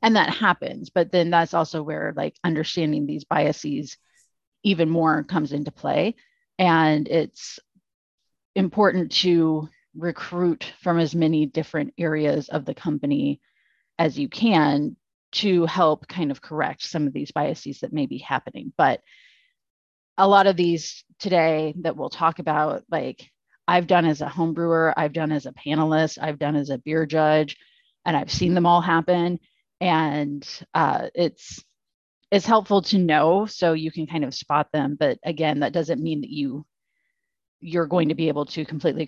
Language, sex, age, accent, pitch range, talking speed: English, female, 30-49, American, 155-180 Hz, 165 wpm